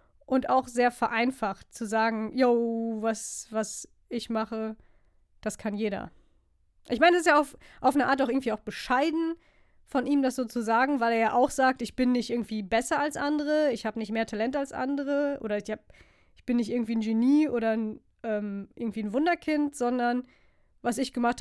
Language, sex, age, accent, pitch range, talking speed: German, female, 20-39, German, 215-255 Hz, 200 wpm